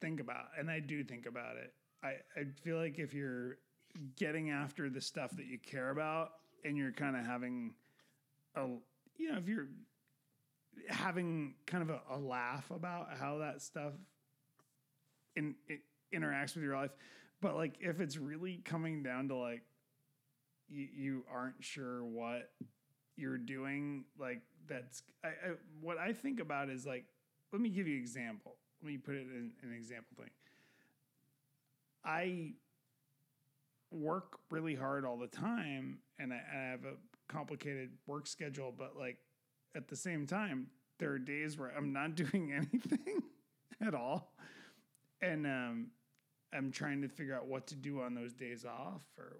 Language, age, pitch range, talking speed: English, 30-49, 130-160 Hz, 165 wpm